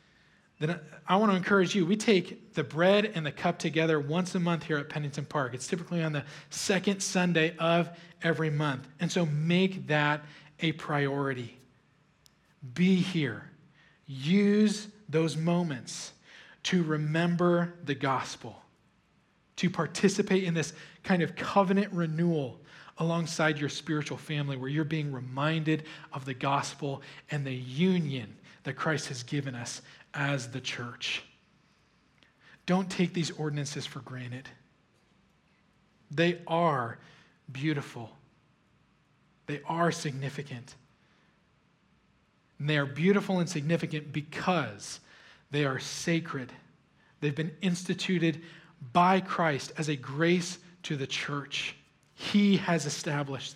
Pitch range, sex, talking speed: 145-175 Hz, male, 125 wpm